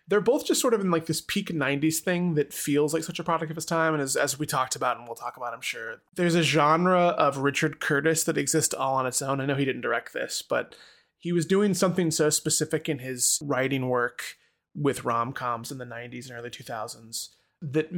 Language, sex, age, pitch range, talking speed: English, male, 20-39, 130-165 Hz, 235 wpm